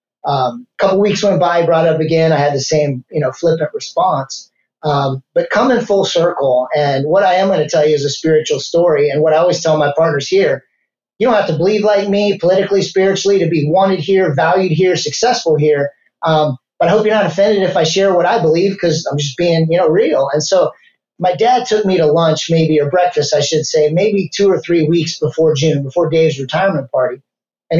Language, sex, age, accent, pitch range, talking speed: English, male, 30-49, American, 155-195 Hz, 225 wpm